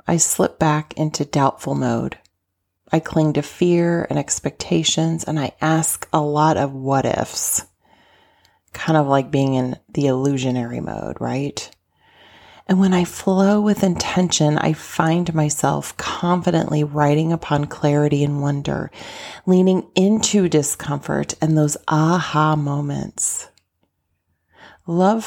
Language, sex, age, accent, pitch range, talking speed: English, female, 30-49, American, 130-165 Hz, 125 wpm